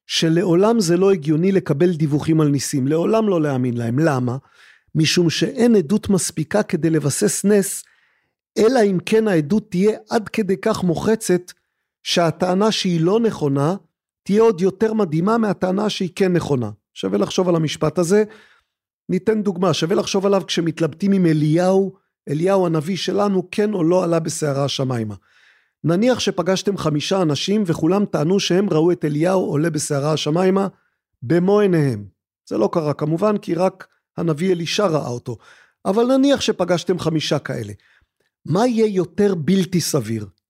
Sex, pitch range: male, 150-200 Hz